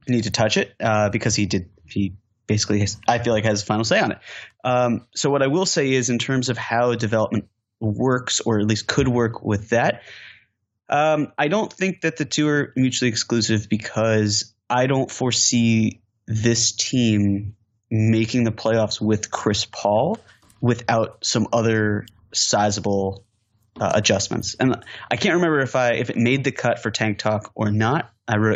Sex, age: male, 20-39